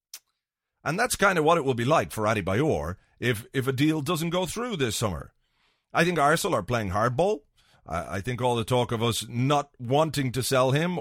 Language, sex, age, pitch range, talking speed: English, male, 40-59, 110-155 Hz, 215 wpm